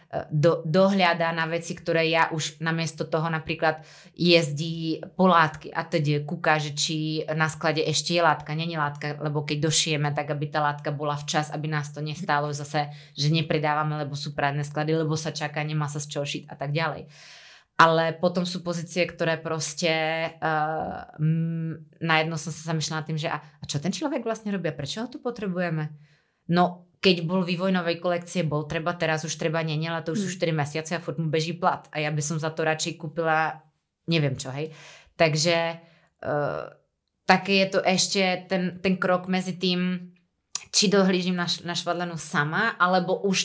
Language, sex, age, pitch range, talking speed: Slovak, female, 20-39, 155-180 Hz, 180 wpm